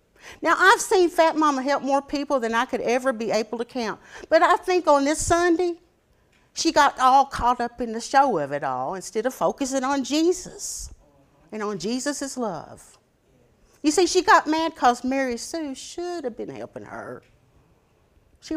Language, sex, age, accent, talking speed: English, female, 50-69, American, 180 wpm